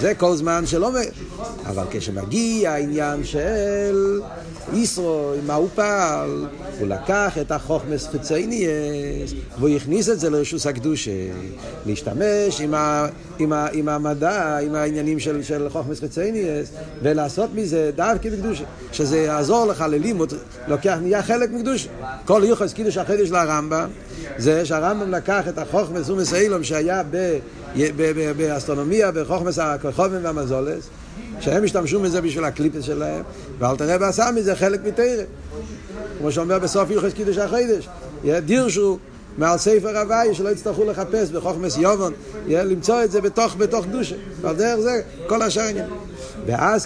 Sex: male